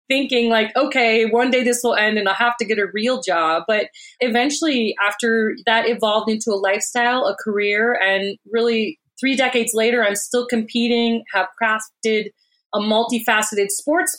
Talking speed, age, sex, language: 165 wpm, 30-49, female, English